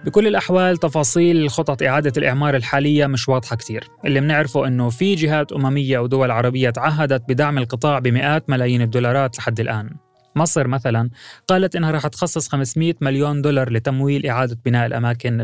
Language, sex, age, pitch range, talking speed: Arabic, male, 20-39, 120-145 Hz, 150 wpm